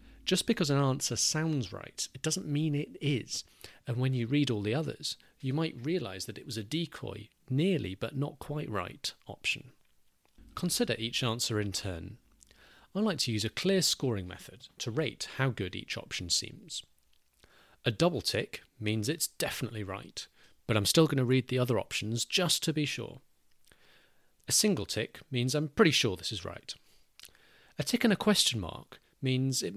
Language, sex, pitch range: English, male, 105-150 Hz